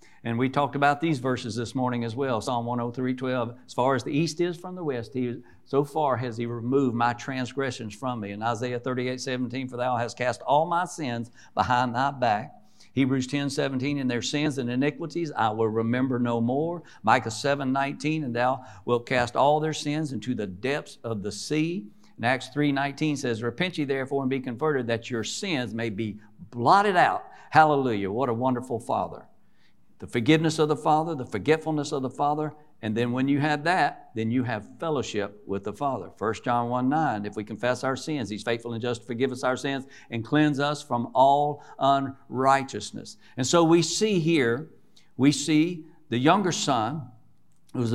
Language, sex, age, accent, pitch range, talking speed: English, male, 60-79, American, 120-145 Hz, 190 wpm